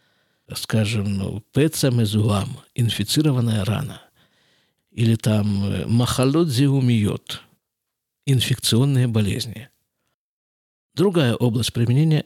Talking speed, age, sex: 70 wpm, 50-69, male